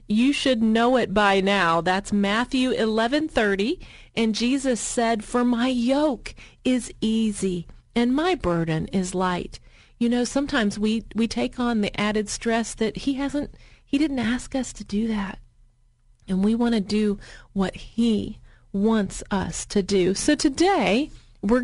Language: English